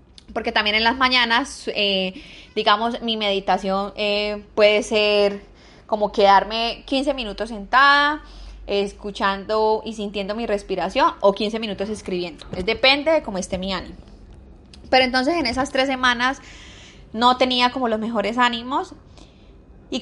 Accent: Colombian